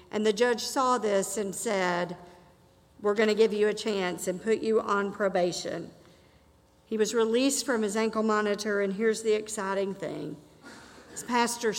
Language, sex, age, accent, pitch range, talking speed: English, female, 50-69, American, 190-230 Hz, 170 wpm